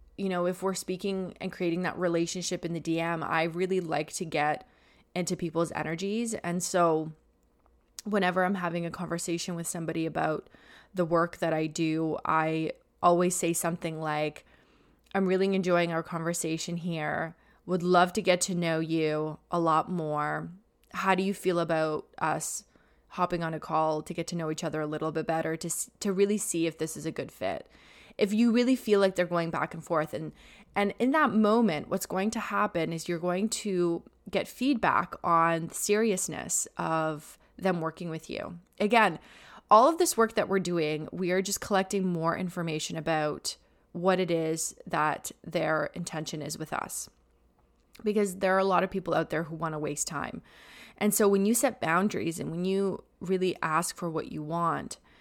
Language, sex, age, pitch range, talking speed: English, female, 20-39, 160-190 Hz, 185 wpm